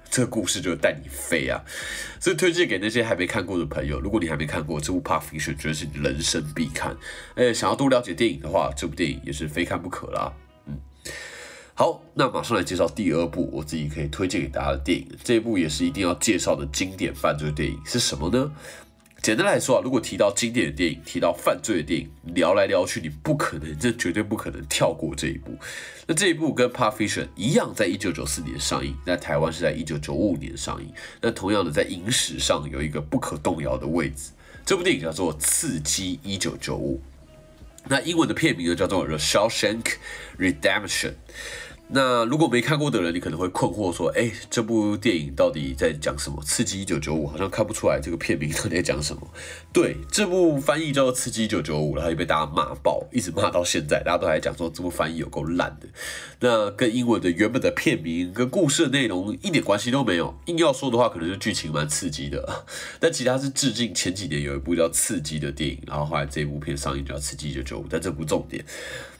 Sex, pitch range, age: male, 75-115 Hz, 20-39